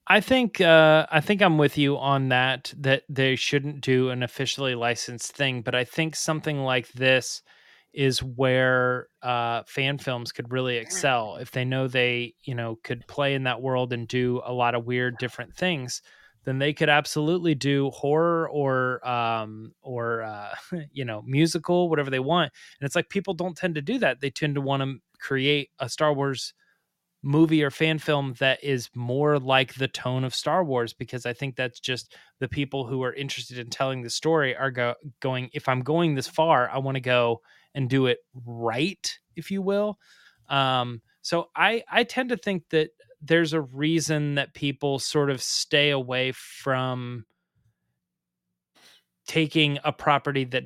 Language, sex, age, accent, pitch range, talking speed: English, male, 30-49, American, 125-150 Hz, 180 wpm